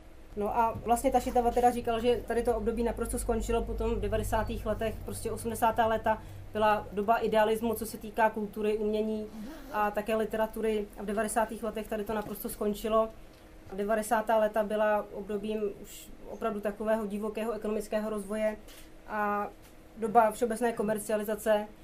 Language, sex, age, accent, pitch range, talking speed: Czech, female, 30-49, native, 215-230 Hz, 145 wpm